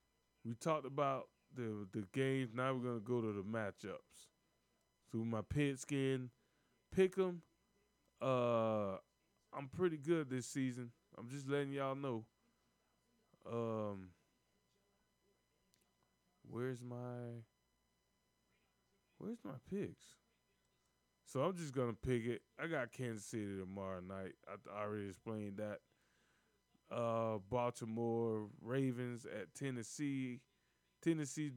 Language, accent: English, American